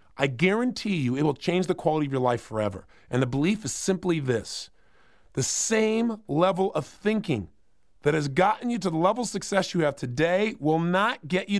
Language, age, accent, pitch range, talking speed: English, 40-59, American, 175-265 Hz, 200 wpm